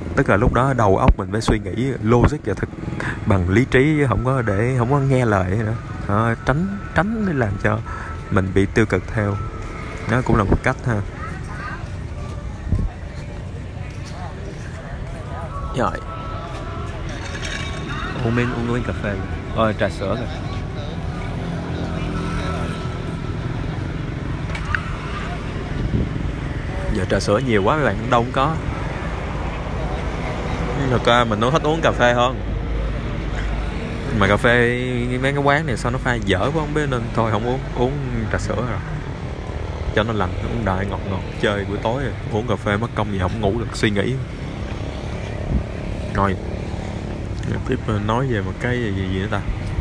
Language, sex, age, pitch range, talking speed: Vietnamese, male, 20-39, 95-120 Hz, 150 wpm